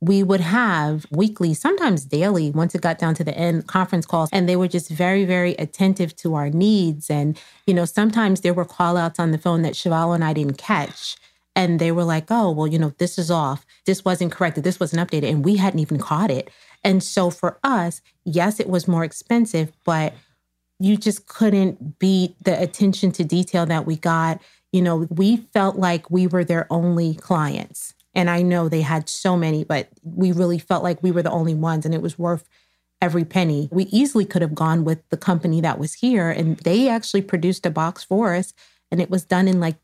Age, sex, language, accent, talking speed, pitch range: 30-49, female, English, American, 215 wpm, 160-185 Hz